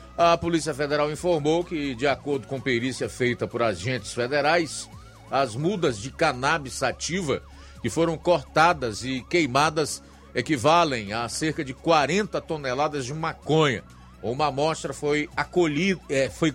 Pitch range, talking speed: 115-155 Hz, 125 wpm